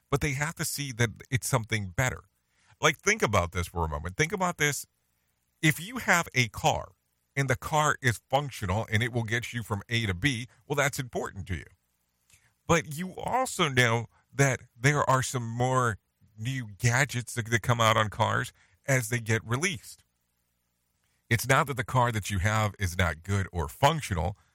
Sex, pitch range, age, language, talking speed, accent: male, 95-130 Hz, 50-69, English, 190 wpm, American